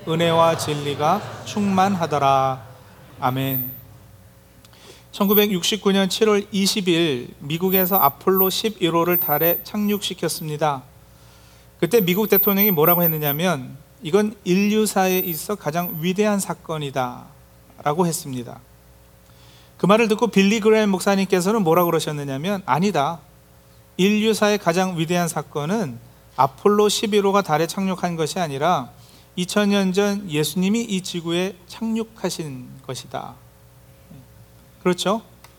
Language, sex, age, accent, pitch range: Korean, male, 40-59, native, 140-205 Hz